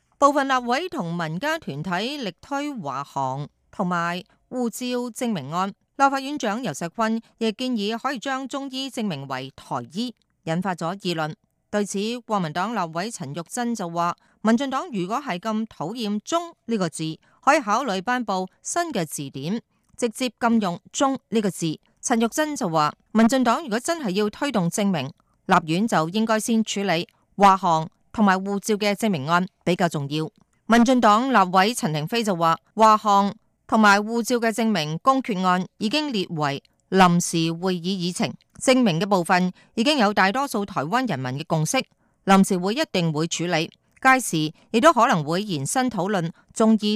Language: Chinese